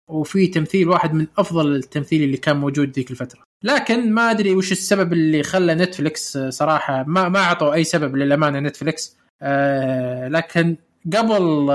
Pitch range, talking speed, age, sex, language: 150-185 Hz, 150 wpm, 20-39, male, Arabic